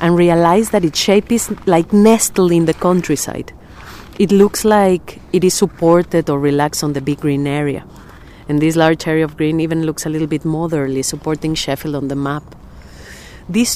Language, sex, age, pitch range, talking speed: English, female, 40-59, 155-205 Hz, 185 wpm